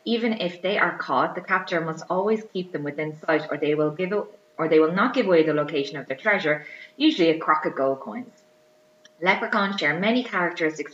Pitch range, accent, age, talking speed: 140-180 Hz, Irish, 20-39, 190 wpm